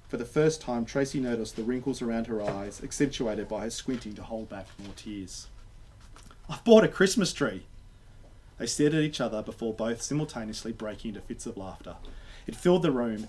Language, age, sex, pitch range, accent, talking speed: English, 30-49, male, 105-155 Hz, Australian, 190 wpm